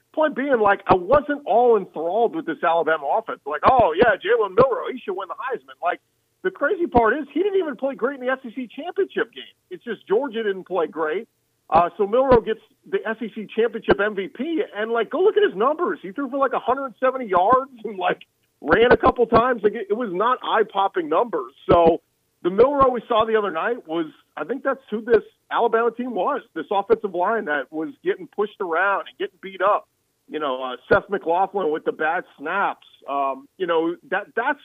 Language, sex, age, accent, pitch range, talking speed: English, male, 40-59, American, 175-275 Hz, 205 wpm